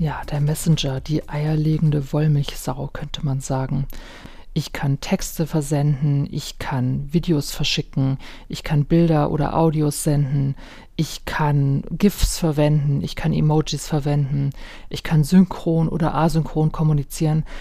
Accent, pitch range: German, 150-180 Hz